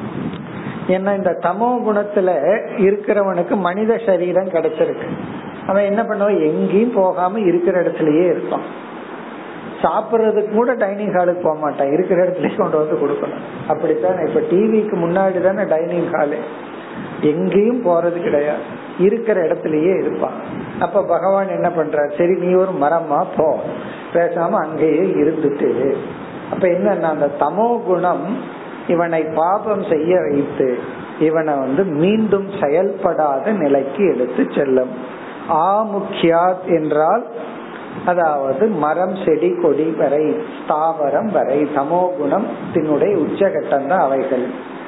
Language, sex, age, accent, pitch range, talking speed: Tamil, male, 50-69, native, 155-200 Hz, 70 wpm